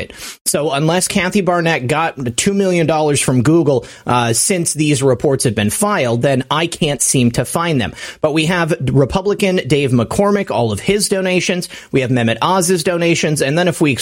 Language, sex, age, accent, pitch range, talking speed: English, male, 30-49, American, 130-185 Hz, 180 wpm